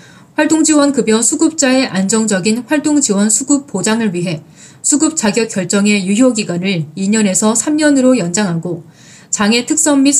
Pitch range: 185-255 Hz